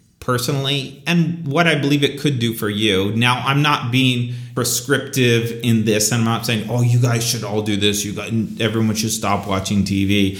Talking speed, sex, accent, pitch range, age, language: 195 wpm, male, American, 110-130 Hz, 30-49, English